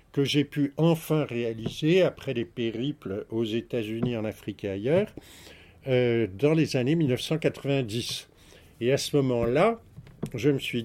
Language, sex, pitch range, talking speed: French, male, 115-155 Hz, 145 wpm